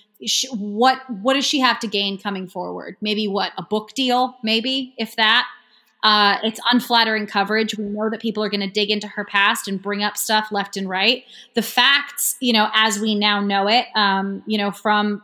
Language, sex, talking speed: English, female, 205 wpm